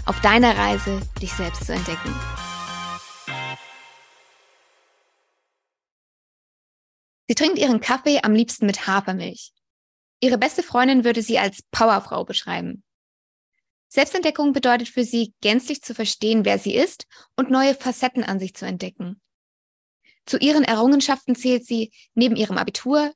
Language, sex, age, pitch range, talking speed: German, female, 20-39, 210-255 Hz, 125 wpm